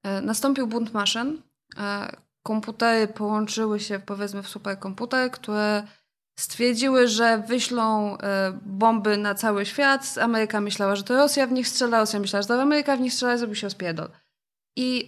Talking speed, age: 145 wpm, 20-39